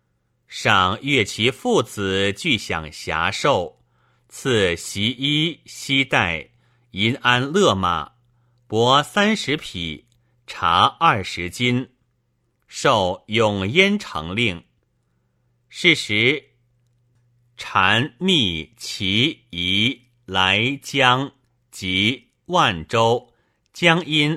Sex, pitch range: male, 100-130 Hz